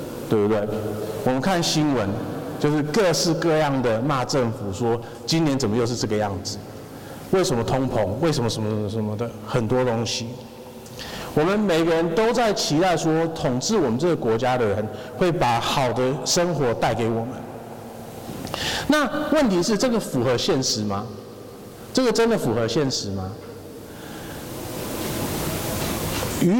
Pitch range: 115-165 Hz